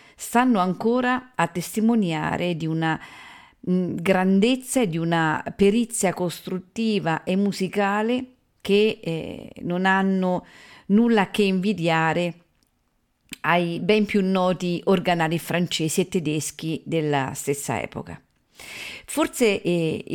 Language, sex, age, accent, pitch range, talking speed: Italian, female, 50-69, native, 160-205 Hz, 100 wpm